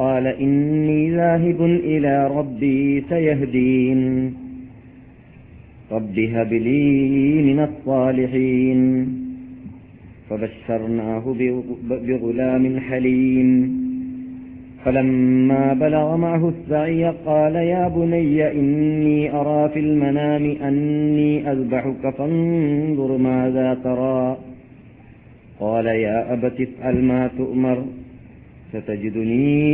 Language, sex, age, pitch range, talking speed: Malayalam, male, 40-59, 125-145 Hz, 75 wpm